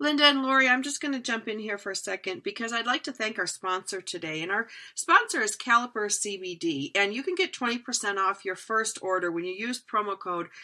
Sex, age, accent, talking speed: female, 40-59, American, 230 wpm